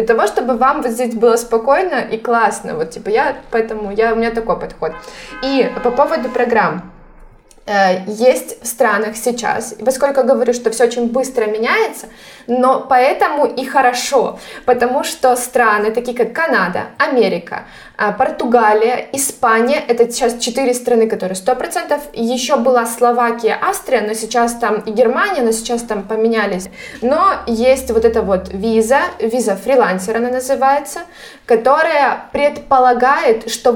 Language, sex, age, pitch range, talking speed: Russian, female, 20-39, 225-260 Hz, 140 wpm